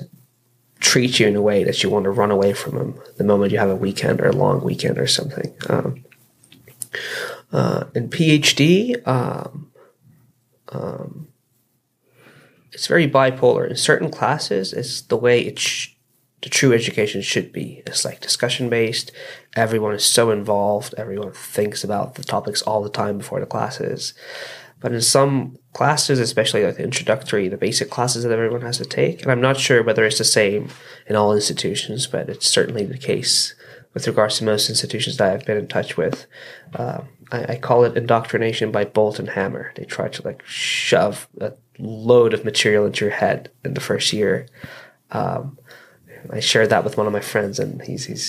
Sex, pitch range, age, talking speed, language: male, 105-130 Hz, 20-39, 180 wpm, English